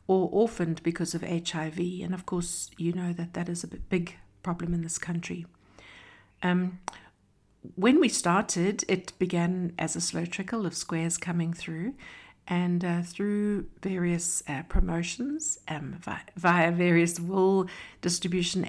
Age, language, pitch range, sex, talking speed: 60-79, English, 170-195 Hz, female, 140 wpm